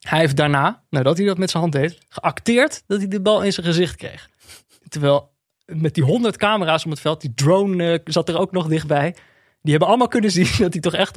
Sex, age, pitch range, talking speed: male, 20-39, 140-180 Hz, 230 wpm